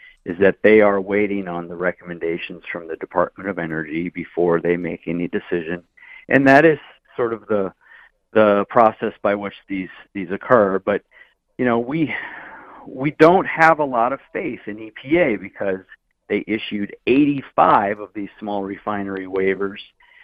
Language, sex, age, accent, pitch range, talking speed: English, male, 50-69, American, 100-140 Hz, 155 wpm